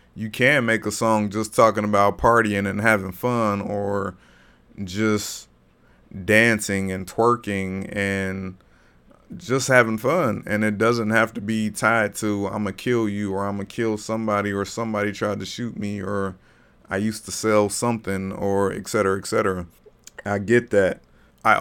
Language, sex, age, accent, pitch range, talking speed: English, male, 30-49, American, 95-110 Hz, 170 wpm